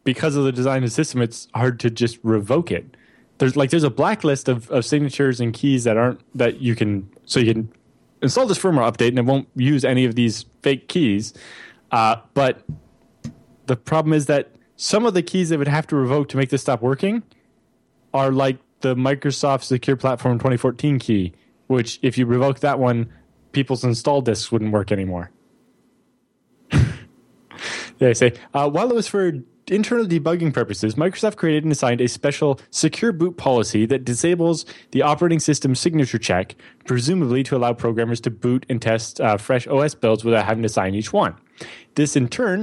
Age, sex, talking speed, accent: 20-39, male, 185 wpm, American